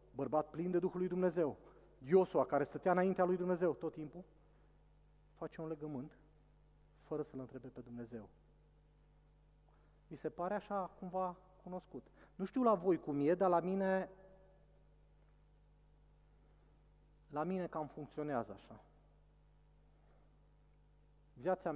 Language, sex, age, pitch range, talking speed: Romanian, male, 30-49, 125-170 Hz, 120 wpm